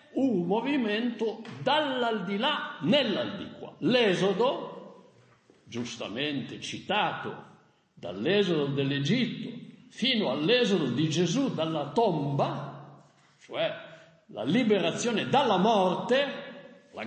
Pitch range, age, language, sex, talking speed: 175-245 Hz, 60-79, Italian, male, 75 wpm